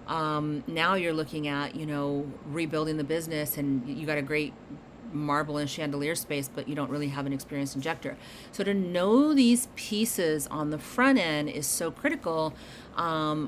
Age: 40-59